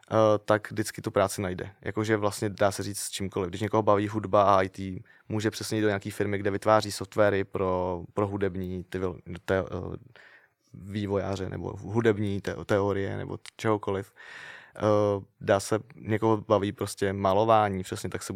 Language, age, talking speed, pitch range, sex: Czech, 20-39, 165 wpm, 100-110 Hz, male